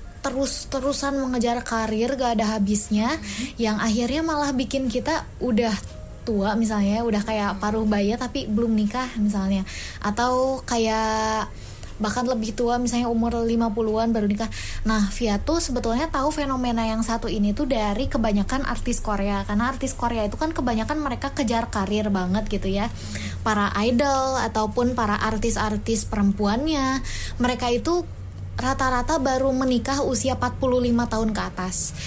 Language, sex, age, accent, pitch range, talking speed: Indonesian, female, 20-39, native, 205-245 Hz, 135 wpm